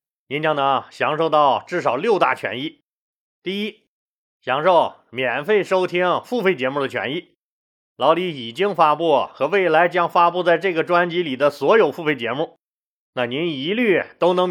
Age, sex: 30-49, male